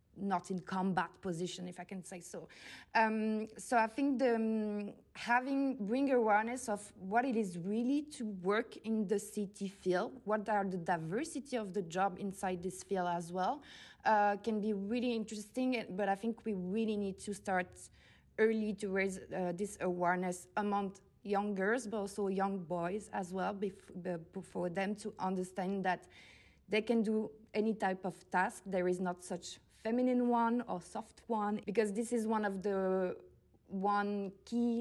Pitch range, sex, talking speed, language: 185-215 Hz, female, 170 wpm, English